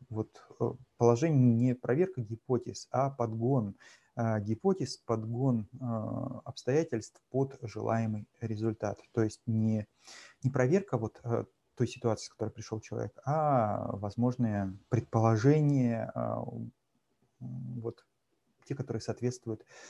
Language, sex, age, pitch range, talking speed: Russian, male, 30-49, 110-130 Hz, 95 wpm